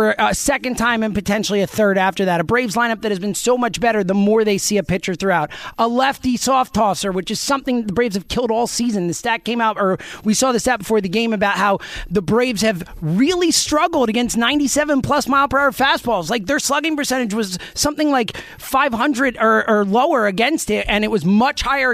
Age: 30-49